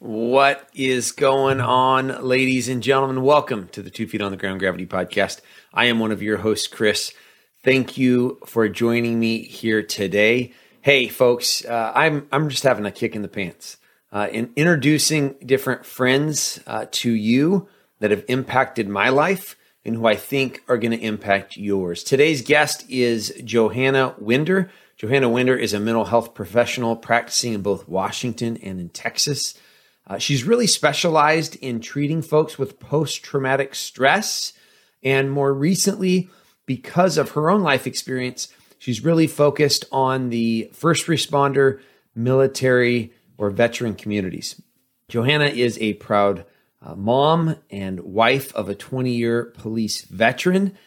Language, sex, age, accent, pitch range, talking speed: English, male, 30-49, American, 110-140 Hz, 150 wpm